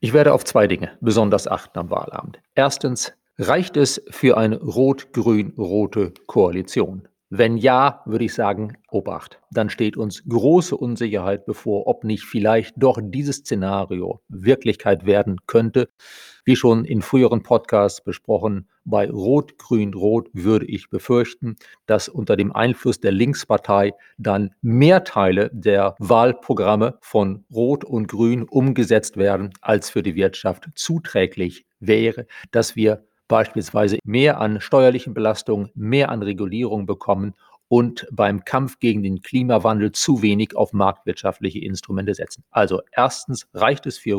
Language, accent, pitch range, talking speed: German, German, 105-130 Hz, 135 wpm